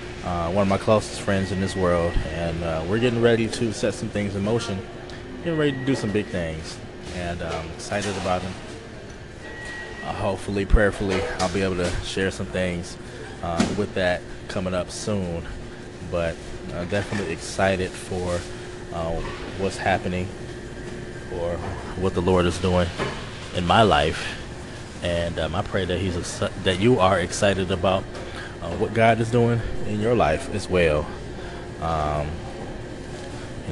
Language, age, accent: English, 20-39, American